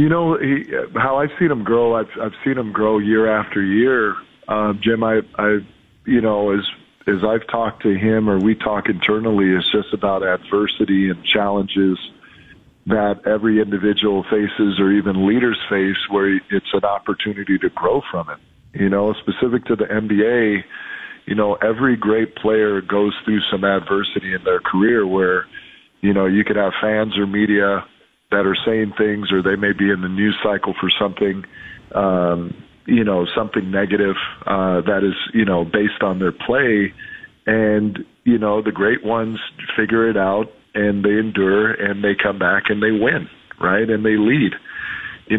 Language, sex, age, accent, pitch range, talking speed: English, male, 40-59, American, 100-110 Hz, 175 wpm